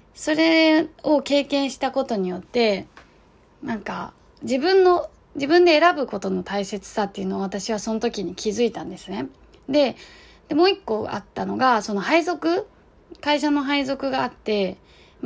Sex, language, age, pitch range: female, Japanese, 20-39, 205-280 Hz